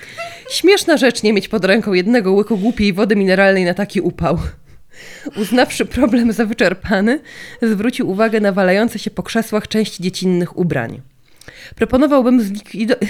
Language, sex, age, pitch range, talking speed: Polish, female, 20-39, 175-230 Hz, 135 wpm